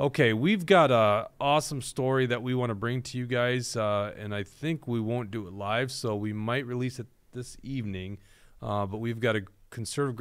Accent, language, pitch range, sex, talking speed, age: American, English, 105-135 Hz, male, 210 wpm, 30-49